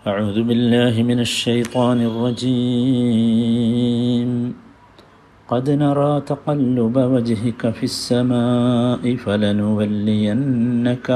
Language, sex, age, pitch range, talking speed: Malayalam, male, 50-69, 105-125 Hz, 65 wpm